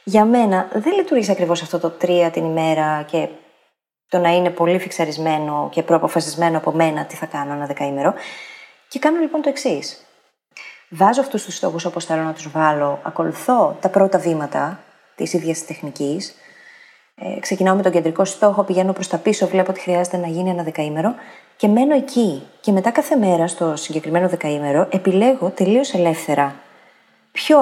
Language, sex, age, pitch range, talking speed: Greek, female, 30-49, 160-230 Hz, 170 wpm